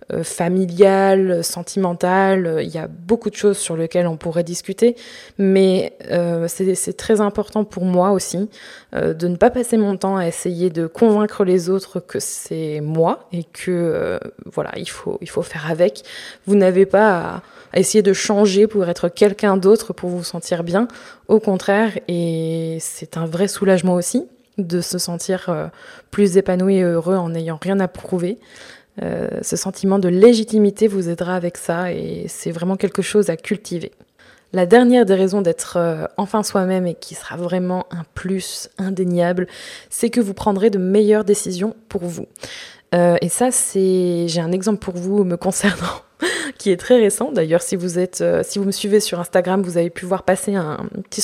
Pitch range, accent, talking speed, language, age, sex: 175-210 Hz, French, 185 wpm, French, 20-39, female